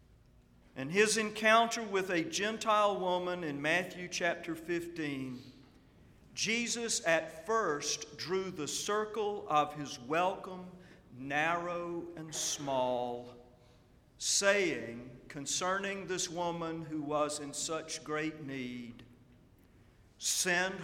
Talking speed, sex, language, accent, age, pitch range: 100 wpm, male, English, American, 50-69, 135-190 Hz